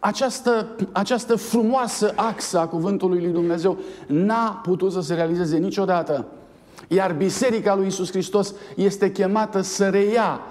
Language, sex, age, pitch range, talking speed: Romanian, male, 50-69, 145-195 Hz, 130 wpm